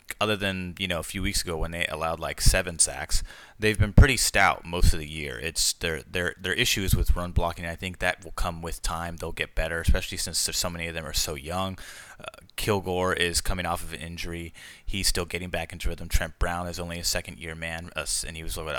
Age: 20-39